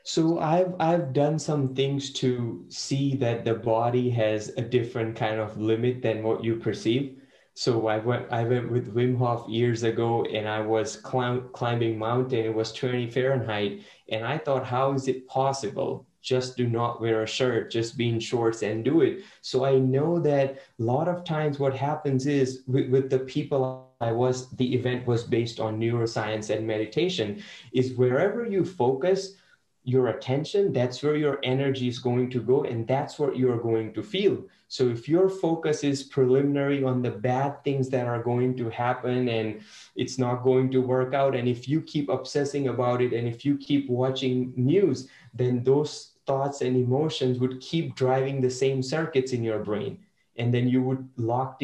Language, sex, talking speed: English, male, 185 wpm